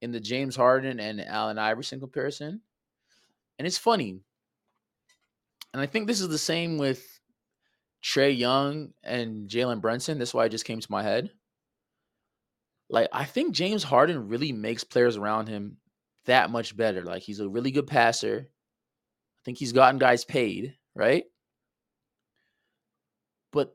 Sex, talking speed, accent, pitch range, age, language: male, 150 wpm, American, 115-155 Hz, 20-39, English